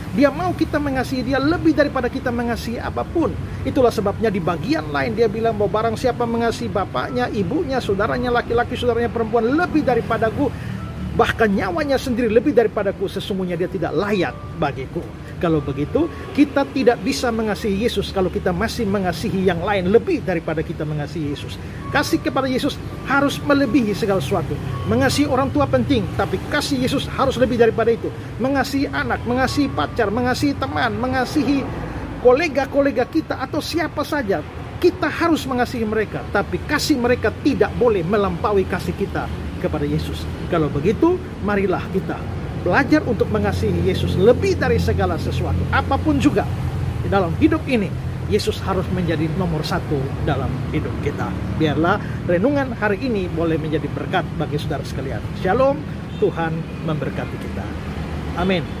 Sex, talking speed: male, 145 wpm